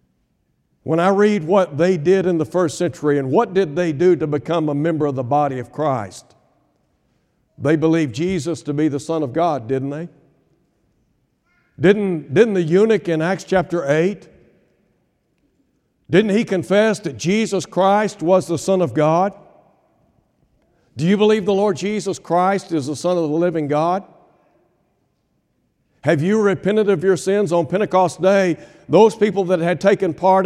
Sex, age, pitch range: male, 60-79, 155-195 Hz